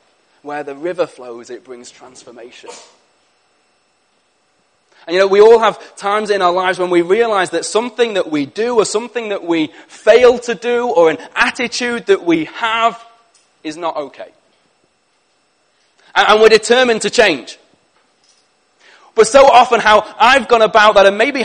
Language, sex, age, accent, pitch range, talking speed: English, male, 30-49, British, 210-255 Hz, 155 wpm